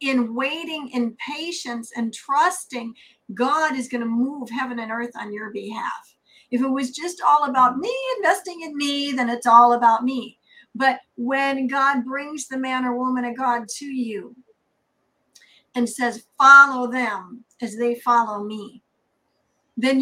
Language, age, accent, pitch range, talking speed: English, 50-69, American, 235-275 Hz, 160 wpm